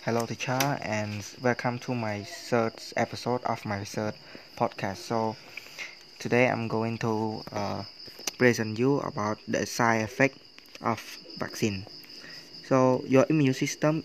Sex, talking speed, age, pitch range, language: male, 130 wpm, 20-39, 115-140 Hz, English